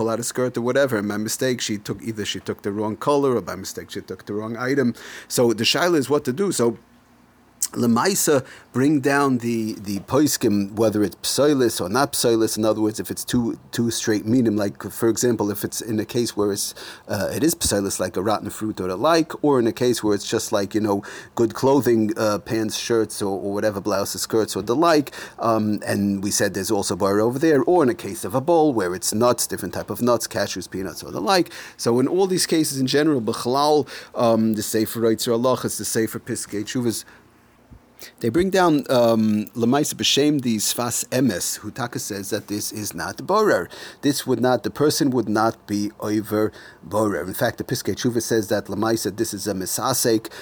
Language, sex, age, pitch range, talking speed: English, male, 30-49, 105-135 Hz, 215 wpm